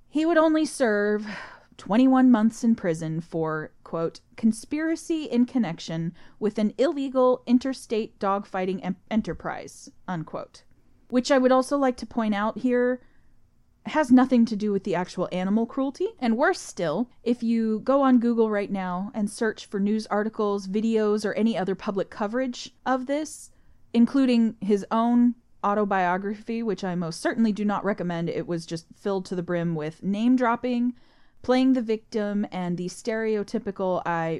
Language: English